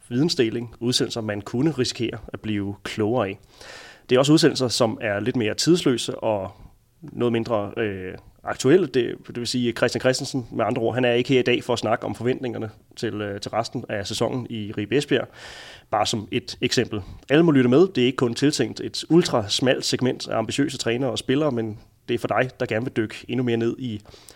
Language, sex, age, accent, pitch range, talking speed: Danish, male, 30-49, native, 110-130 Hz, 210 wpm